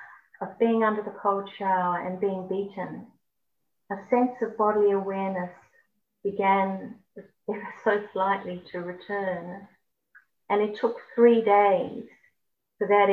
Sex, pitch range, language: female, 195-250 Hz, English